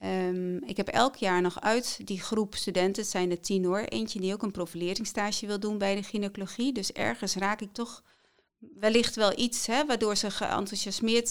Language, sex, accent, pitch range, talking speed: Dutch, female, Dutch, 190-230 Hz, 185 wpm